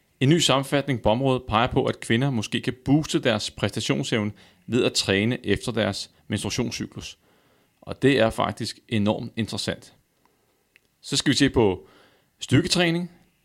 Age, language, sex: 30-49, Danish, male